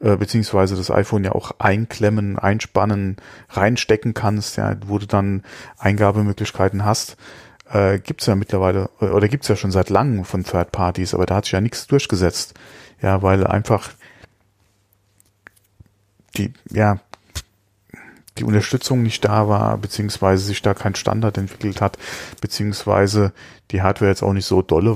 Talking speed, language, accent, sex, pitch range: 150 wpm, German, German, male, 100-110 Hz